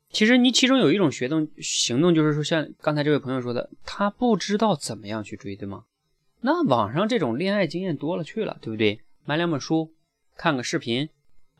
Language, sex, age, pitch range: Chinese, male, 20-39, 115-165 Hz